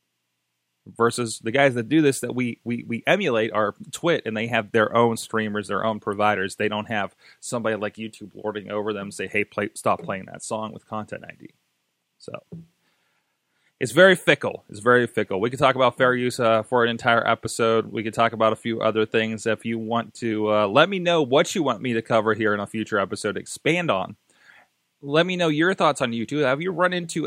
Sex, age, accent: male, 20-39, American